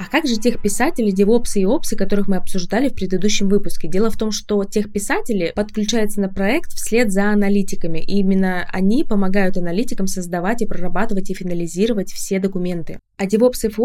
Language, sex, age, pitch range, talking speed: Russian, female, 20-39, 185-210 Hz, 180 wpm